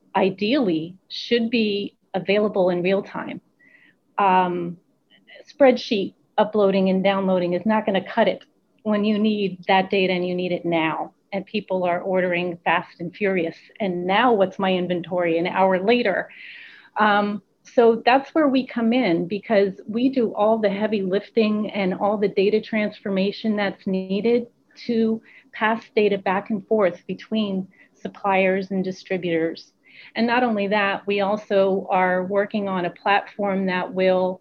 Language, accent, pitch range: English, American, 190-220 Hz